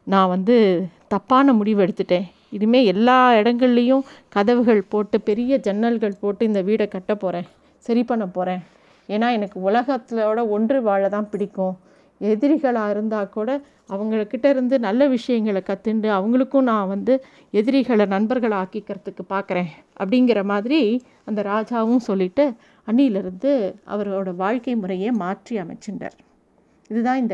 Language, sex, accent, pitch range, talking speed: Tamil, female, native, 205-270 Hz, 115 wpm